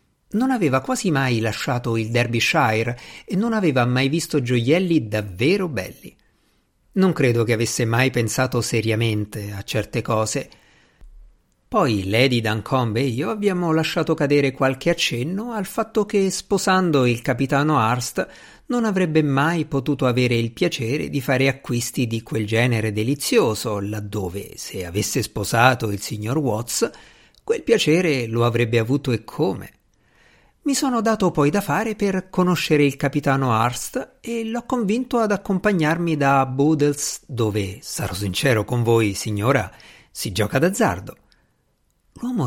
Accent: native